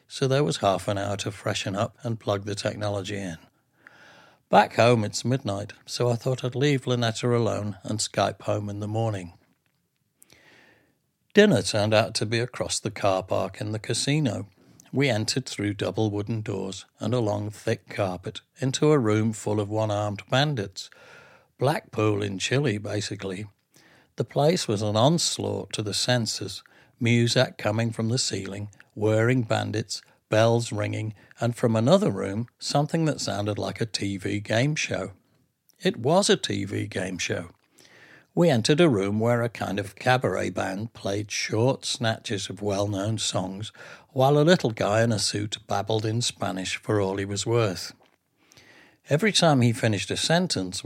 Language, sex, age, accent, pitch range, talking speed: English, male, 60-79, British, 100-125 Hz, 160 wpm